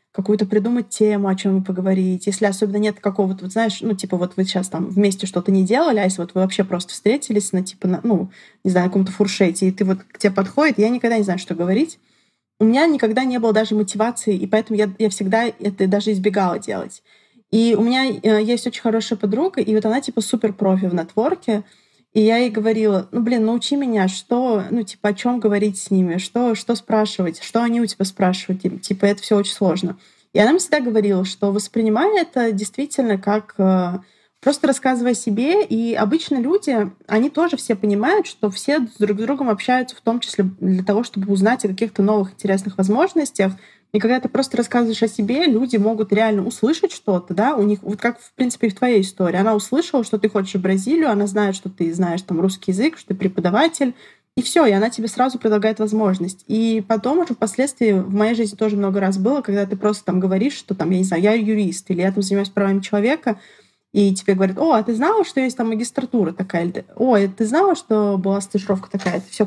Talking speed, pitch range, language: 215 wpm, 195-235 Hz, Russian